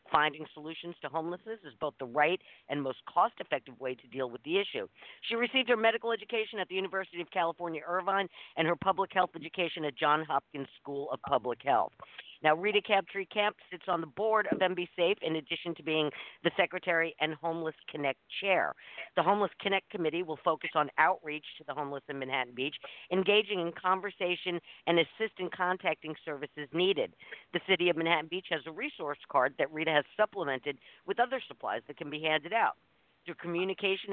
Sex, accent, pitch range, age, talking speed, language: female, American, 150-185 Hz, 50-69, 190 wpm, English